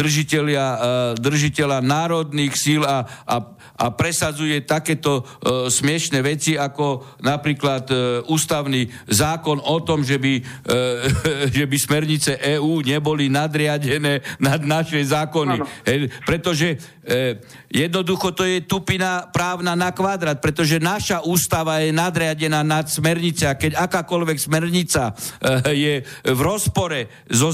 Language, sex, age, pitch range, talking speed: Slovak, male, 50-69, 135-165 Hz, 125 wpm